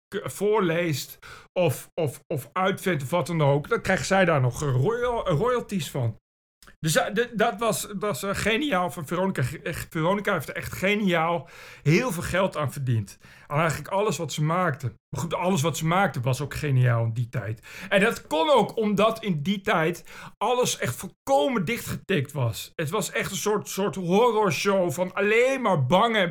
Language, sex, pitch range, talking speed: Dutch, male, 145-195 Hz, 180 wpm